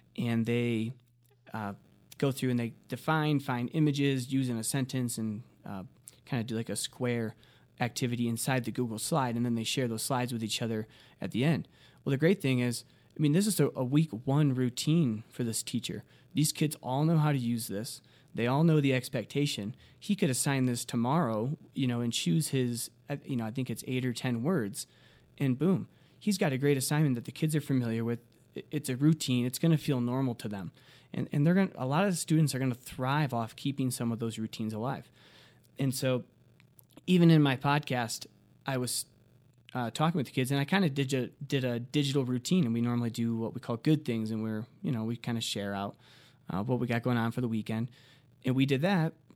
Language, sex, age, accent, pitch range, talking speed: English, male, 20-39, American, 115-140 Hz, 220 wpm